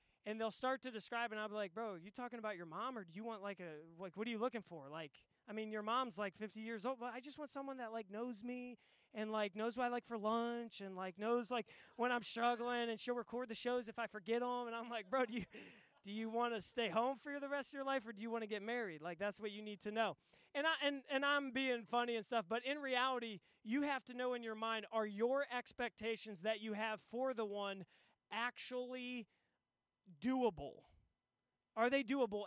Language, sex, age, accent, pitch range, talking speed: English, male, 20-39, American, 200-240 Hz, 250 wpm